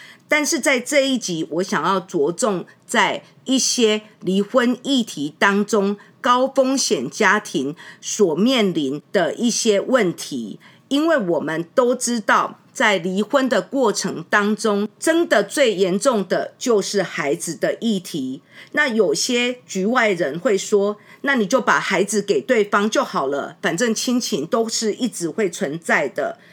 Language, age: English, 50-69